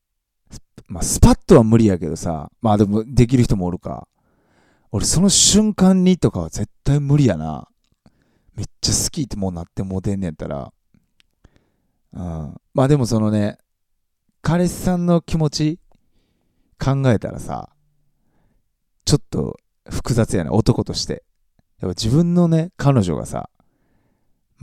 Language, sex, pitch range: Japanese, male, 90-135 Hz